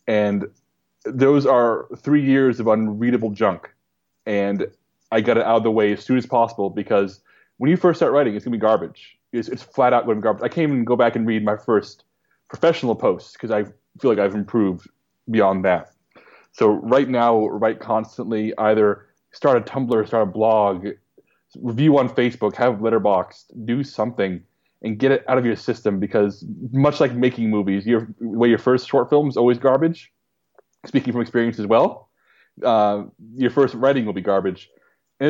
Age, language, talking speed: 20-39, English, 190 wpm